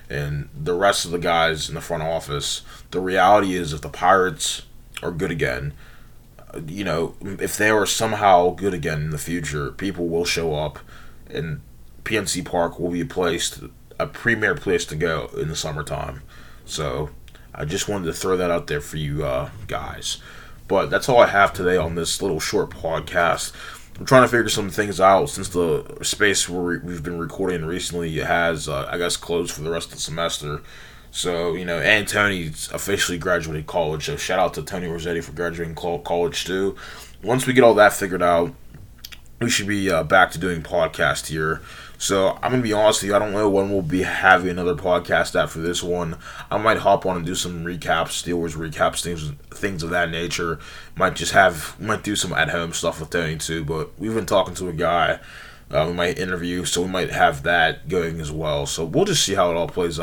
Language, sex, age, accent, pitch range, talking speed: English, male, 20-39, American, 80-95 Hz, 205 wpm